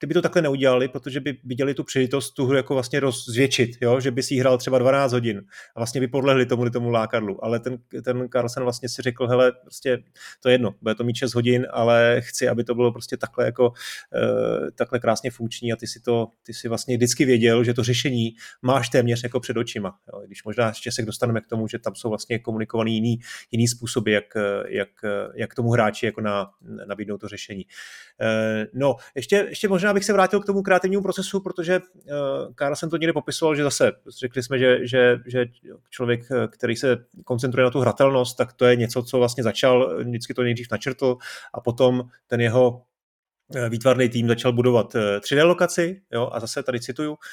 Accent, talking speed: native, 205 wpm